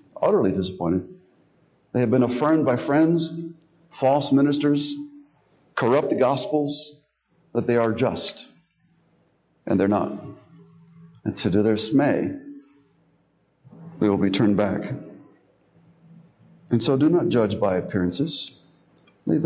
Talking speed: 115 wpm